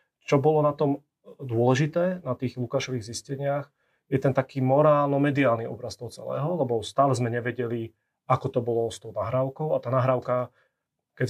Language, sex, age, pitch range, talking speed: Slovak, male, 30-49, 120-135 Hz, 160 wpm